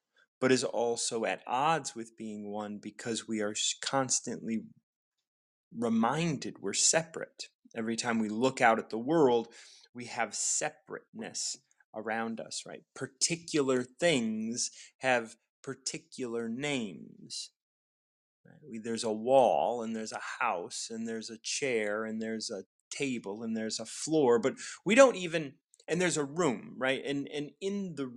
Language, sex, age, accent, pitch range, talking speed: English, male, 30-49, American, 110-150 Hz, 140 wpm